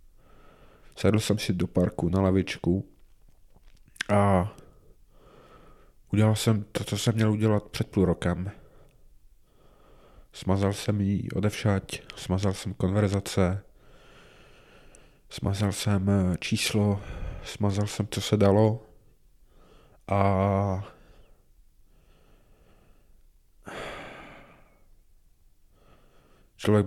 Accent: native